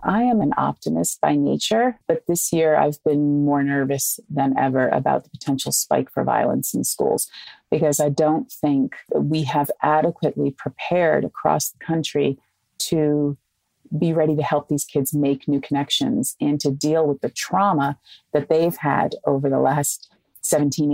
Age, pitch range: 30-49, 140-155 Hz